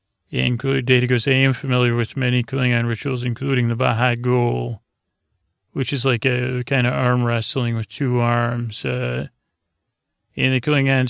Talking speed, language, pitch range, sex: 155 wpm, English, 115-130 Hz, male